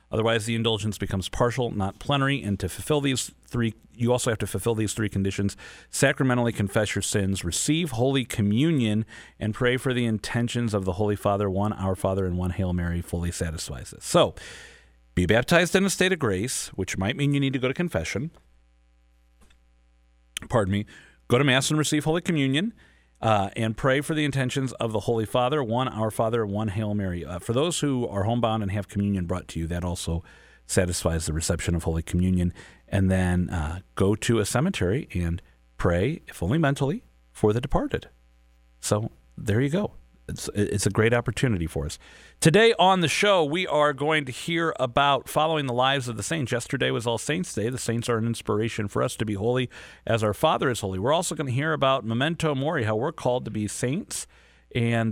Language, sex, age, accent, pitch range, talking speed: English, male, 40-59, American, 95-130 Hz, 200 wpm